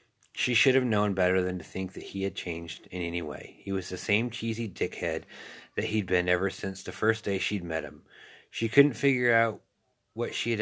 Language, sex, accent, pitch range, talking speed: English, male, American, 90-110 Hz, 220 wpm